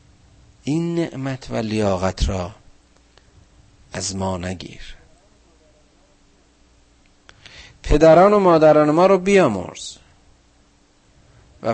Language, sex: Persian, male